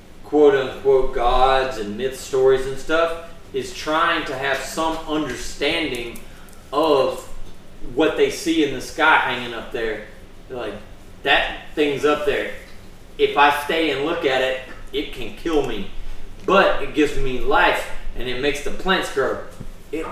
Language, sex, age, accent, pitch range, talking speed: English, male, 30-49, American, 100-155 Hz, 160 wpm